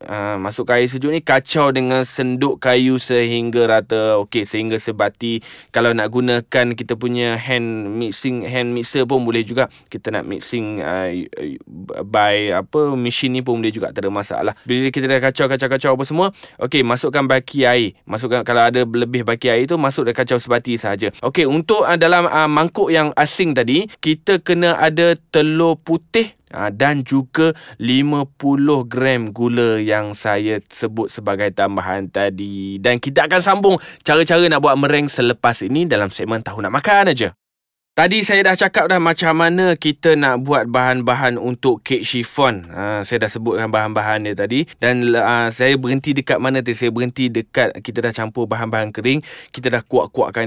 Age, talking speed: 20-39, 170 wpm